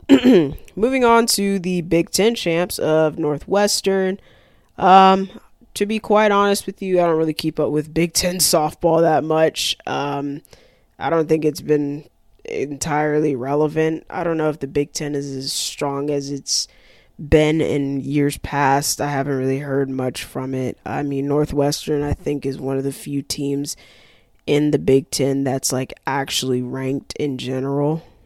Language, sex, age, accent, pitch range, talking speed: English, female, 20-39, American, 135-165 Hz, 170 wpm